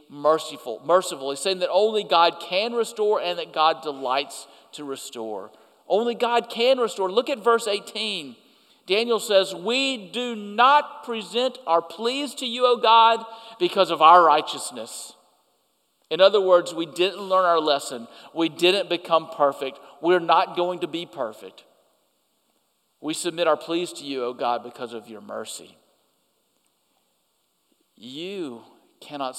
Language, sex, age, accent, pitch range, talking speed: English, male, 50-69, American, 140-200 Hz, 145 wpm